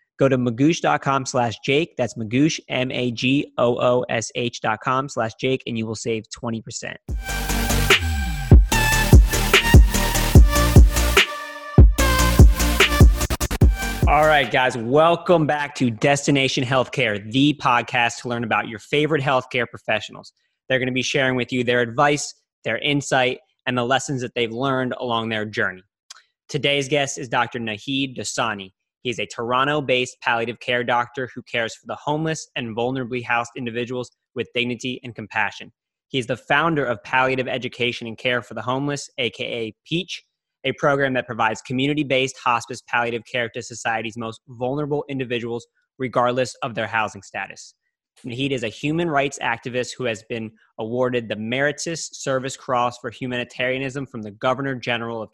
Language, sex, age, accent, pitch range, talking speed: English, male, 20-39, American, 115-135 Hz, 145 wpm